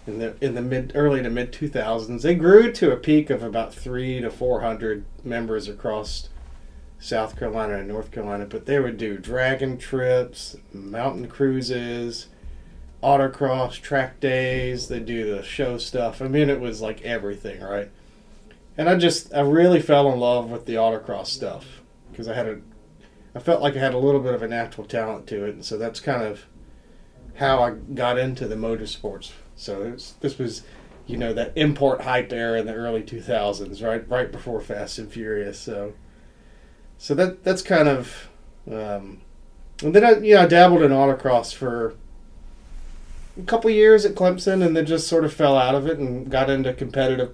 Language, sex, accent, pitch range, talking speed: English, male, American, 110-135 Hz, 185 wpm